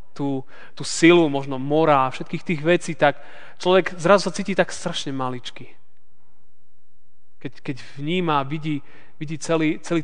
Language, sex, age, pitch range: Slovak, male, 20-39, 140-175 Hz